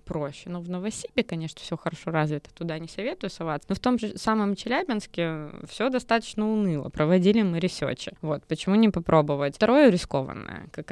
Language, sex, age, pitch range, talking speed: Russian, female, 20-39, 160-200 Hz, 170 wpm